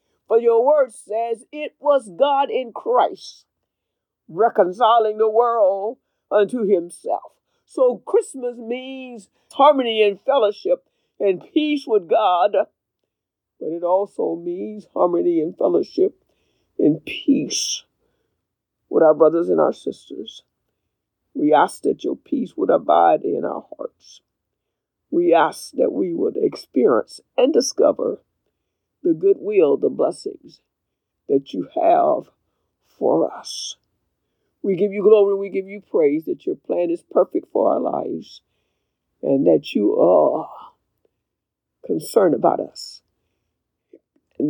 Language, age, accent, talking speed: English, 50-69, American, 120 wpm